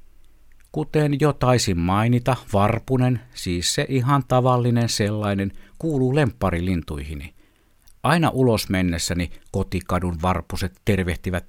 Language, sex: Finnish, male